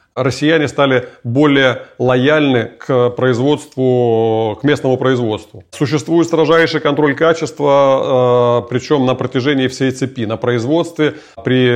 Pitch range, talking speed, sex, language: 120-140 Hz, 105 wpm, male, Russian